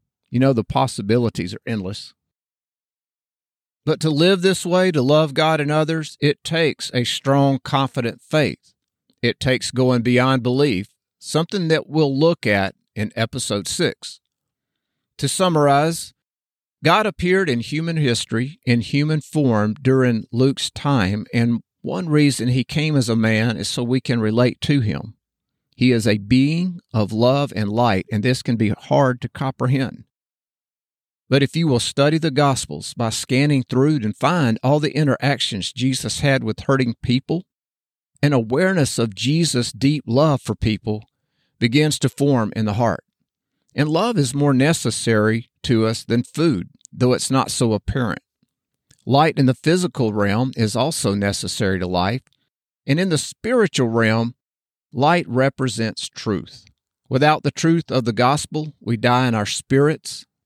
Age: 50-69